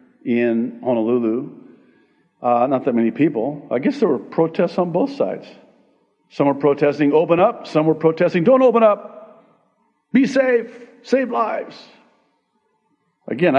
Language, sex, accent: English, male, American